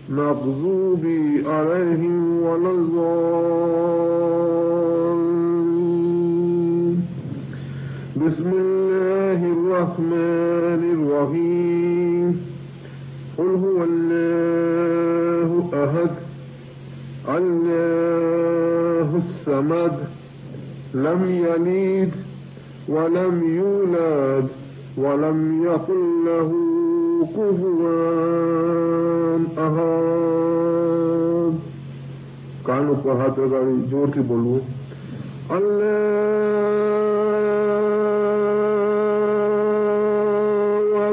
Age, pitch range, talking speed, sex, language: 50-69, 145-180 Hz, 40 wpm, male, English